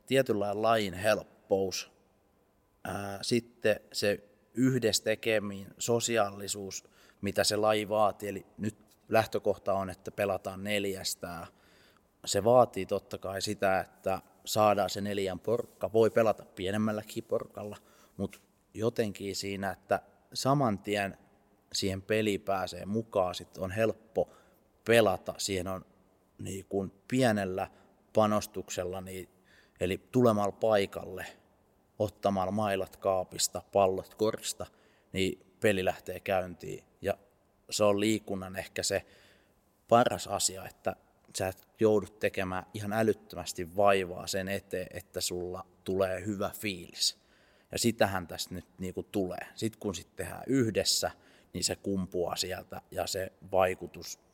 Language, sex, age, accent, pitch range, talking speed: Finnish, male, 30-49, native, 95-105 Hz, 115 wpm